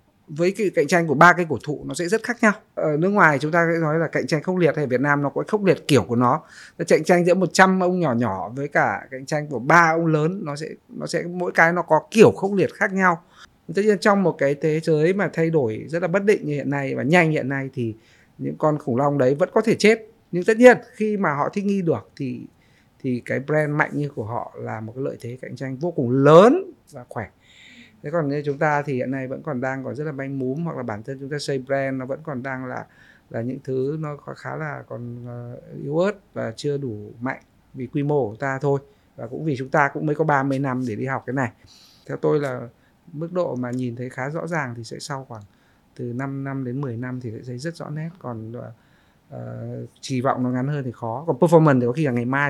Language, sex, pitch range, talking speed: Vietnamese, male, 130-165 Hz, 260 wpm